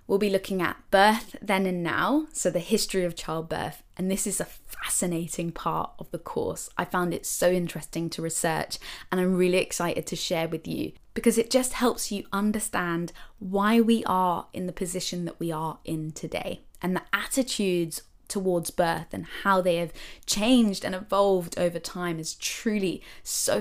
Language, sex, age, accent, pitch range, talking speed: English, female, 20-39, British, 175-215 Hz, 180 wpm